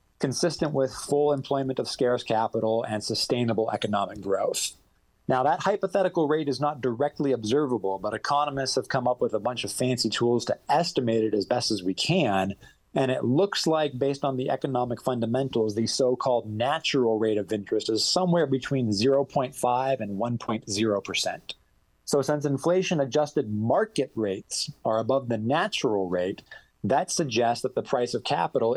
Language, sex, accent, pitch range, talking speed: English, male, American, 110-135 Hz, 160 wpm